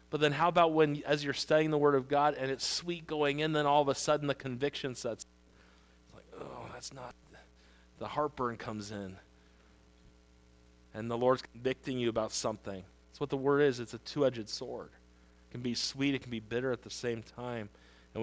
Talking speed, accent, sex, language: 205 wpm, American, male, English